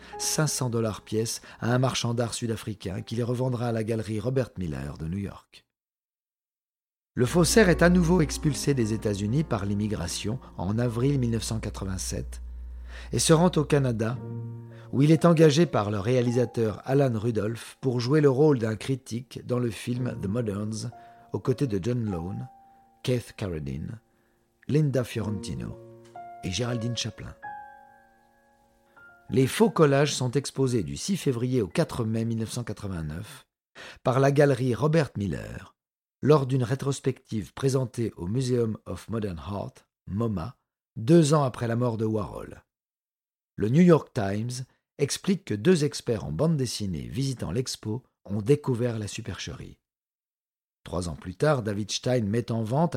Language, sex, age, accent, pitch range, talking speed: French, male, 50-69, French, 110-140 Hz, 145 wpm